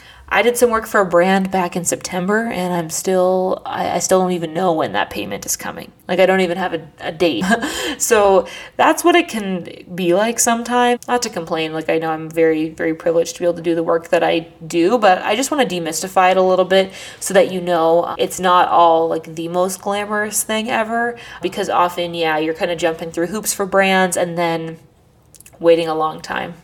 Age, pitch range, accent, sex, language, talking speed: 20-39, 170-240 Hz, American, female, English, 225 wpm